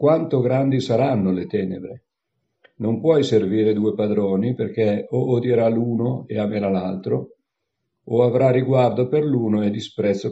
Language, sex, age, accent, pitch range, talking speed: Italian, male, 50-69, native, 100-125 Hz, 140 wpm